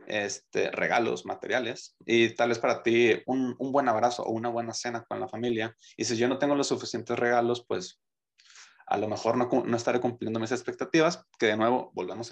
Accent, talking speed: Mexican, 200 wpm